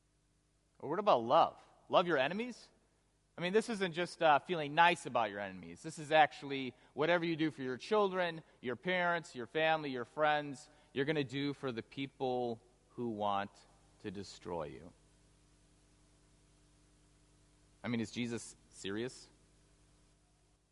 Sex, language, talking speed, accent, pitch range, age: male, English, 145 wpm, American, 115-160 Hz, 30-49